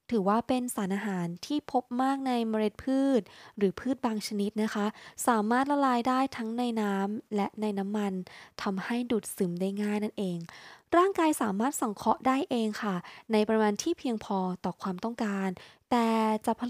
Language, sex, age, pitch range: Thai, female, 20-39, 200-255 Hz